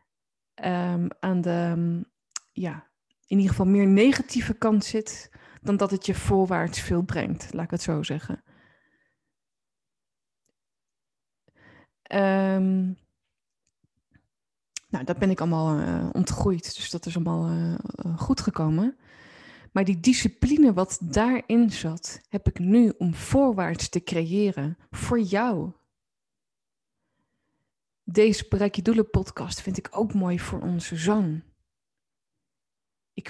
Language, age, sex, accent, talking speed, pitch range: Dutch, 20-39, female, Dutch, 115 wpm, 170-205 Hz